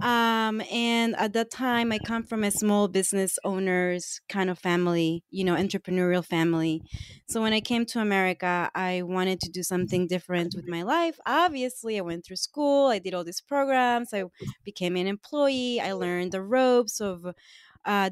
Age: 20-39